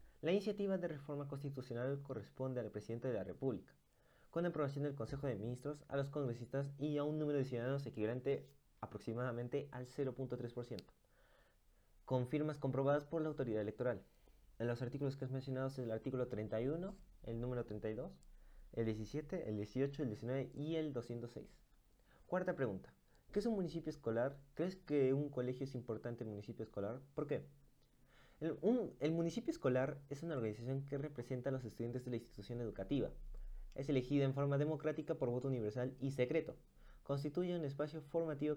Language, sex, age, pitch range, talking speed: Spanish, male, 20-39, 120-145 Hz, 170 wpm